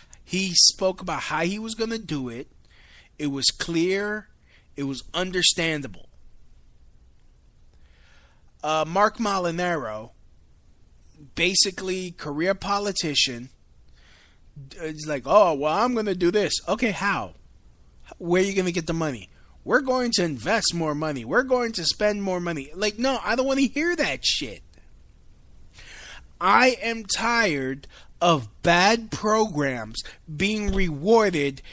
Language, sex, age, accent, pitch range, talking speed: English, male, 20-39, American, 140-220 Hz, 130 wpm